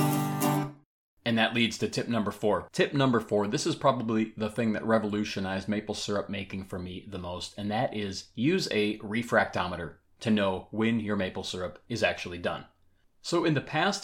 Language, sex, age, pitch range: English, male, 30-49, 95-115 Hz